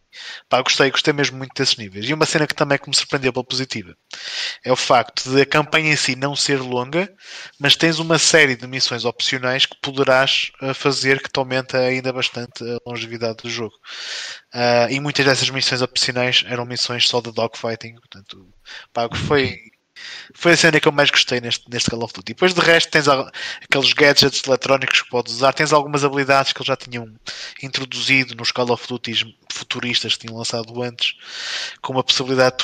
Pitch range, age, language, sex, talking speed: 120-140 Hz, 20-39, Portuguese, male, 195 wpm